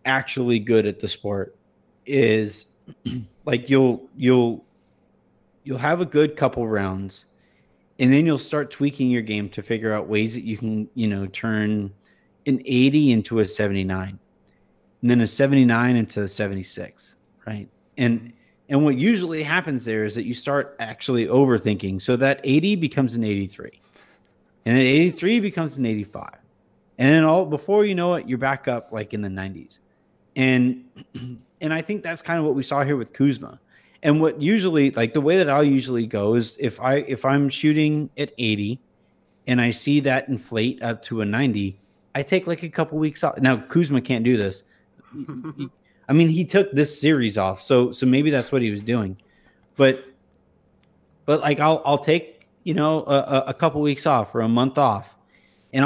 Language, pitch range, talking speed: English, 110-145 Hz, 185 wpm